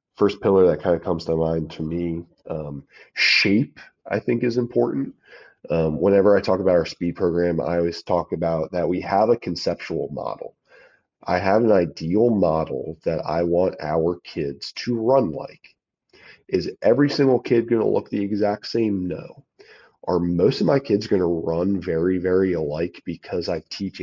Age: 30-49